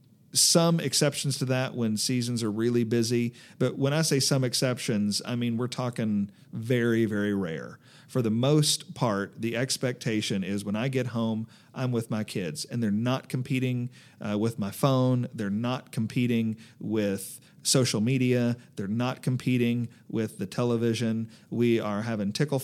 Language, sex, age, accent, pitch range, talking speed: English, male, 40-59, American, 115-140 Hz, 160 wpm